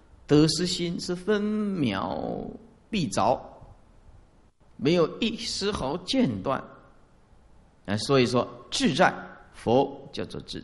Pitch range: 125-210 Hz